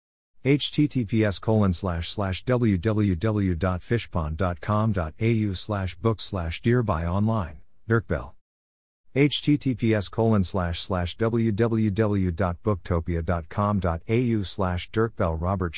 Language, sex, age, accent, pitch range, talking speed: English, male, 50-69, American, 85-115 Hz, 70 wpm